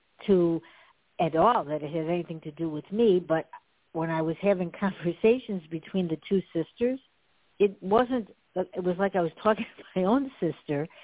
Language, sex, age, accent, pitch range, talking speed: English, female, 60-79, American, 160-200 Hz, 180 wpm